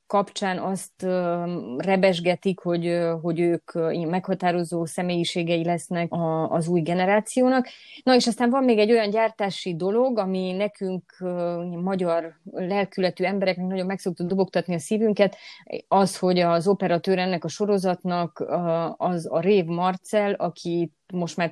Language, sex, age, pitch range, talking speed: Hungarian, female, 20-39, 175-205 Hz, 125 wpm